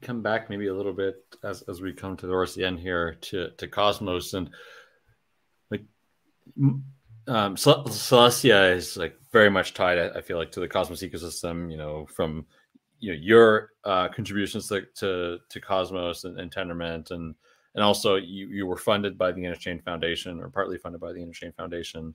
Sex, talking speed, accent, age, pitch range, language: male, 180 wpm, American, 30-49, 90-125 Hz, English